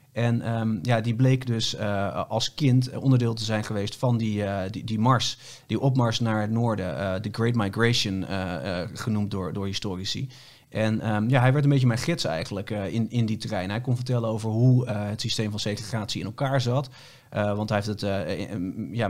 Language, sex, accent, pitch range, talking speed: Dutch, male, Dutch, 105-125 Hz, 200 wpm